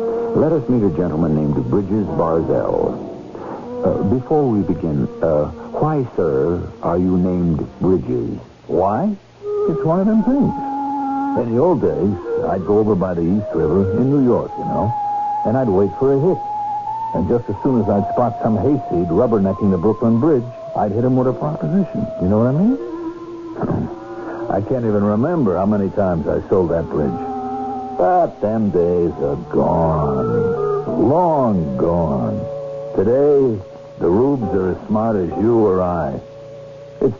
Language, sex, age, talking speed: English, male, 60-79, 160 wpm